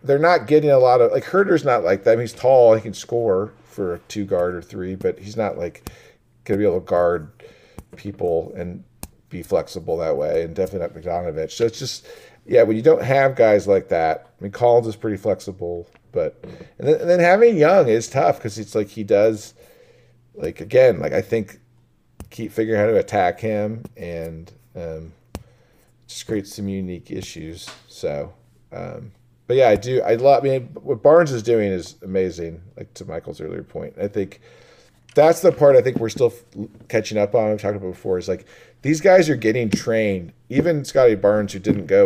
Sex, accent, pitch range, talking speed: male, American, 100-140 Hz, 205 wpm